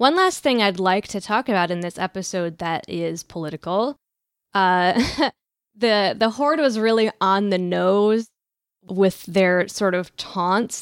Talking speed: 155 wpm